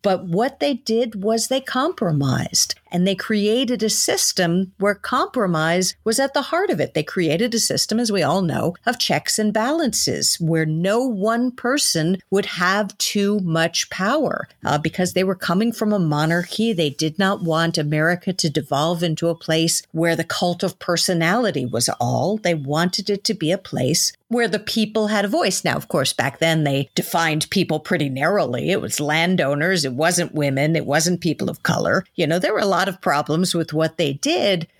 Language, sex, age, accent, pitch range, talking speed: English, female, 50-69, American, 160-210 Hz, 195 wpm